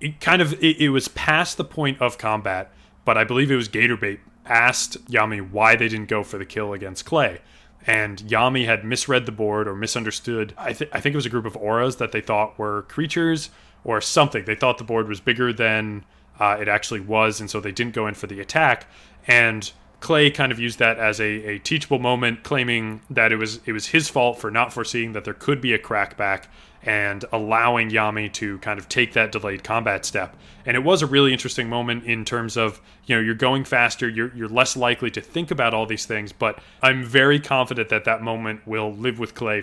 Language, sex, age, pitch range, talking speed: English, male, 20-39, 105-125 Hz, 225 wpm